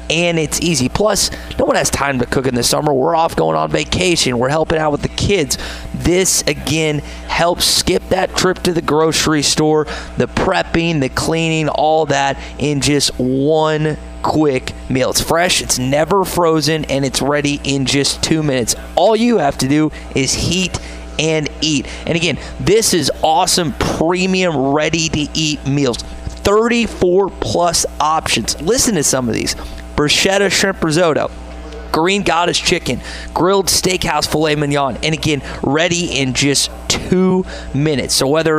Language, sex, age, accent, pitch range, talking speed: English, male, 30-49, American, 135-170 Hz, 155 wpm